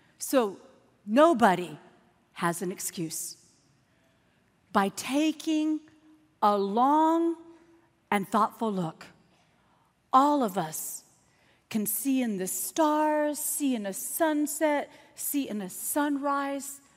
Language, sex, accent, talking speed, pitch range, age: English, female, American, 100 wpm, 210-300 Hz, 50-69